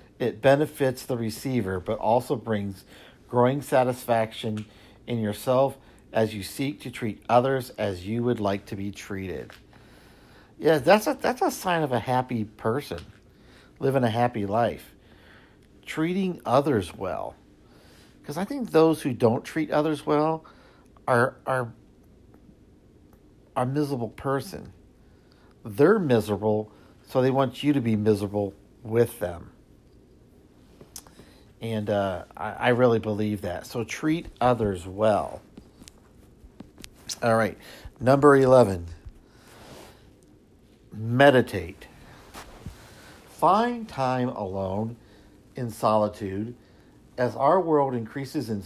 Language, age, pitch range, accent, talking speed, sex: English, 50-69, 105-135 Hz, American, 115 wpm, male